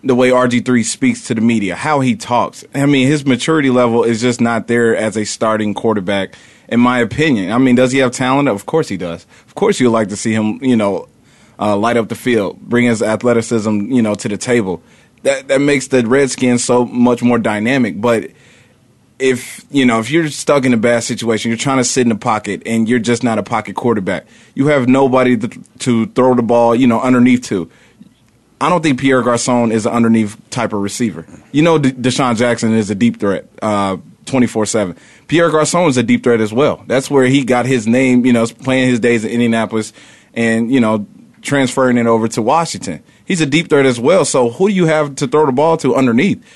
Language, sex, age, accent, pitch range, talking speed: English, male, 30-49, American, 115-135 Hz, 220 wpm